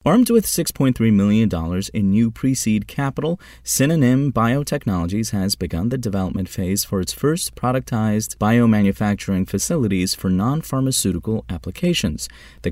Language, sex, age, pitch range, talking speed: English, male, 30-49, 90-125 Hz, 120 wpm